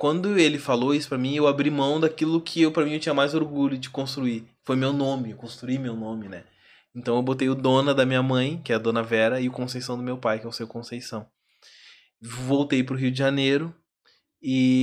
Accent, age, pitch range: Brazilian, 20-39, 115-145 Hz